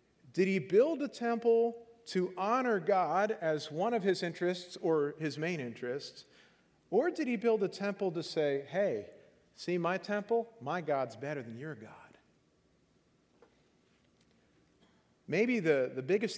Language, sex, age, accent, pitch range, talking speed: English, male, 40-59, American, 155-220 Hz, 145 wpm